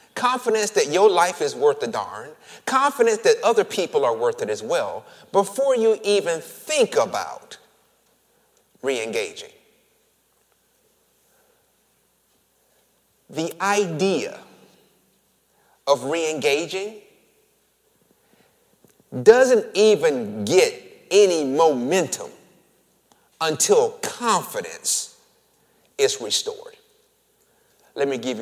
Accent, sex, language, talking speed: American, male, English, 80 wpm